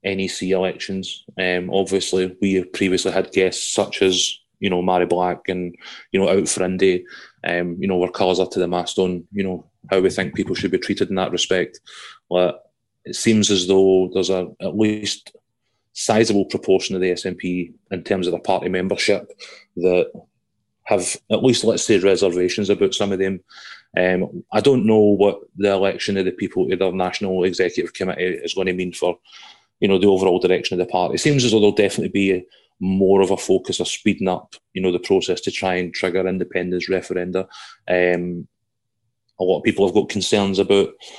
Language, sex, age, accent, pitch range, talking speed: English, male, 30-49, British, 90-105 Hz, 195 wpm